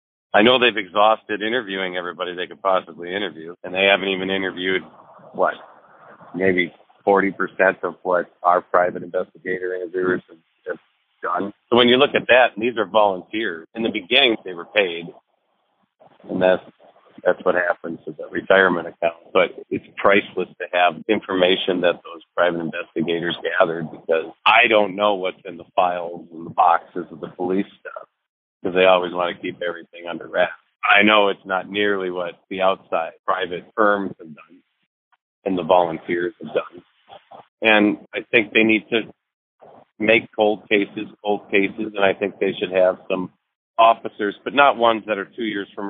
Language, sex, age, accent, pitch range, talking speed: English, male, 50-69, American, 90-110 Hz, 170 wpm